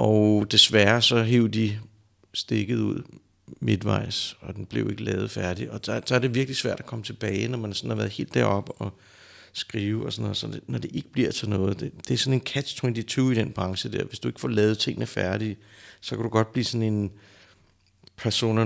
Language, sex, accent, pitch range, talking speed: Danish, male, native, 95-115 Hz, 220 wpm